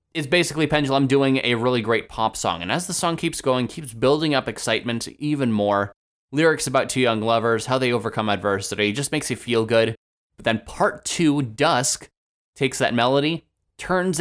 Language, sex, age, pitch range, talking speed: English, male, 20-39, 110-150 Hz, 185 wpm